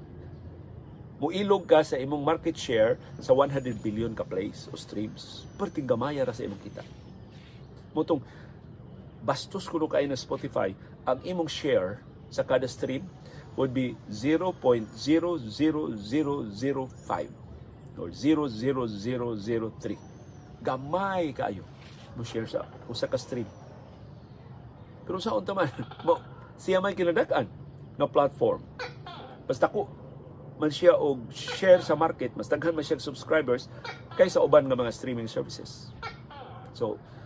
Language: Filipino